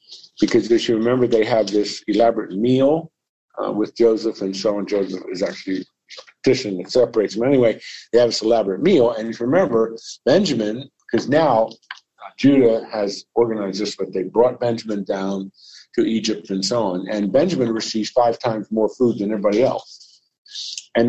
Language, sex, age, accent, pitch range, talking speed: English, male, 50-69, American, 105-130 Hz, 175 wpm